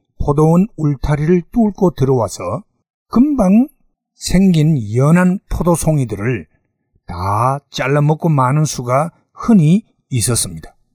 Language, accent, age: Korean, native, 60-79